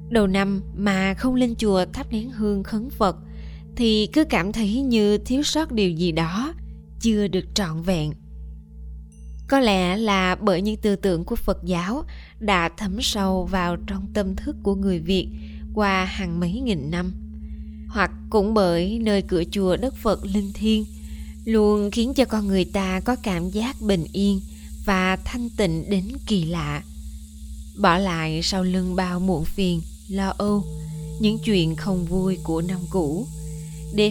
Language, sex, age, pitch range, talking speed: Vietnamese, female, 20-39, 165-210 Hz, 165 wpm